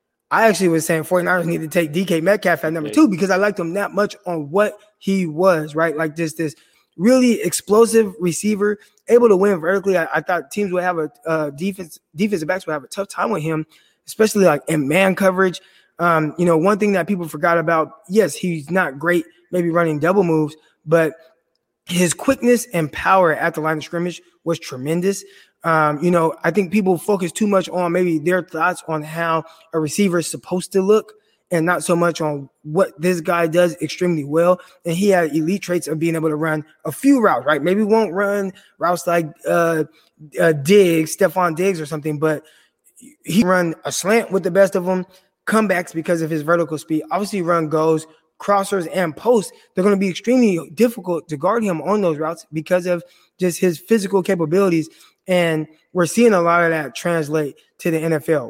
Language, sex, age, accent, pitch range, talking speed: English, male, 20-39, American, 160-195 Hz, 200 wpm